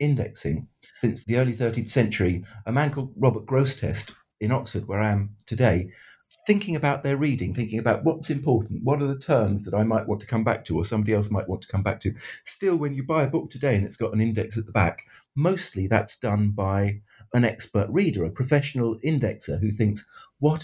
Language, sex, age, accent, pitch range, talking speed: English, male, 50-69, British, 105-140 Hz, 215 wpm